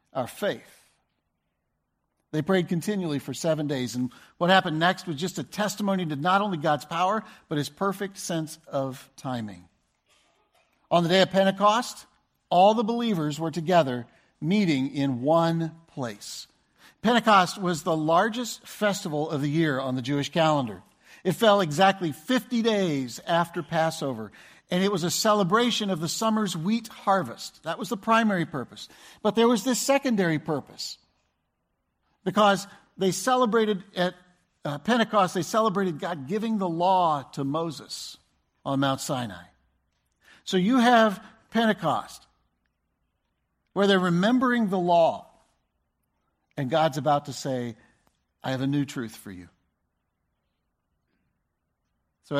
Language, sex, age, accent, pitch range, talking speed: English, male, 50-69, American, 135-200 Hz, 135 wpm